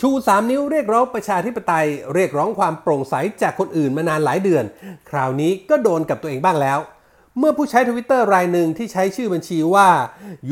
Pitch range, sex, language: 155-225 Hz, male, Thai